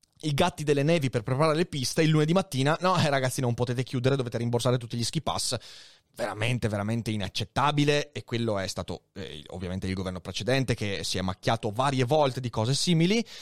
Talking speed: 195 wpm